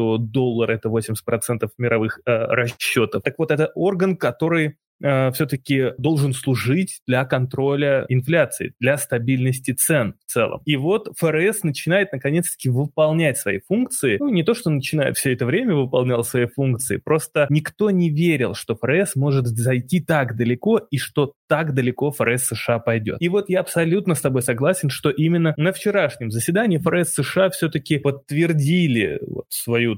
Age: 20-39